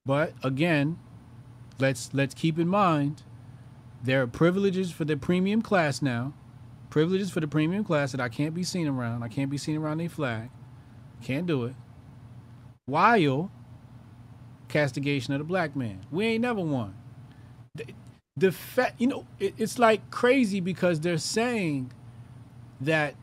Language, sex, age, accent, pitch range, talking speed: English, male, 30-49, American, 125-190 Hz, 150 wpm